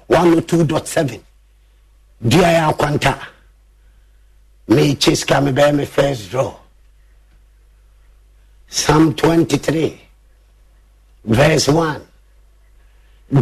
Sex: male